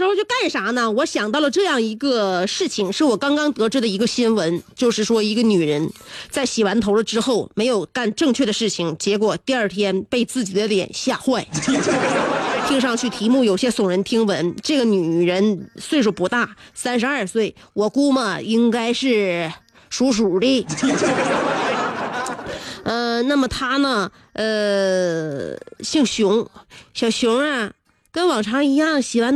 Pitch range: 215-290 Hz